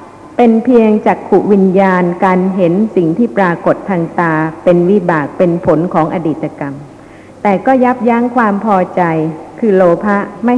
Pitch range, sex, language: 180-235 Hz, female, Thai